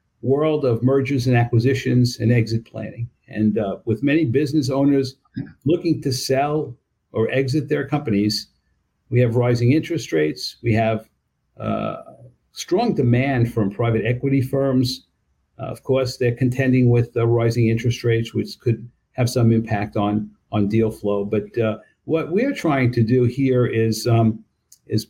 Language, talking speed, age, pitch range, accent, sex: English, 155 wpm, 50-69, 115-135 Hz, American, male